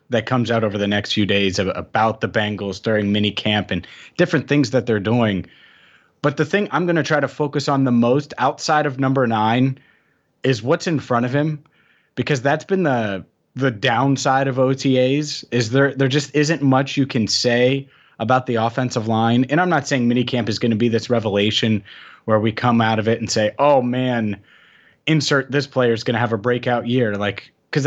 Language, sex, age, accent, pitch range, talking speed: English, male, 30-49, American, 110-135 Hz, 210 wpm